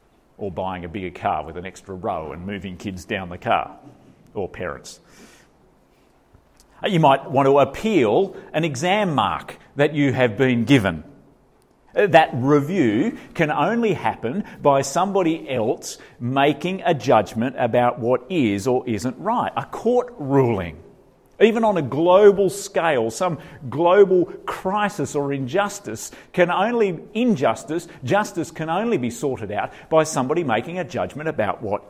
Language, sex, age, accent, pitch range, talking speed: English, male, 40-59, Australian, 115-180 Hz, 145 wpm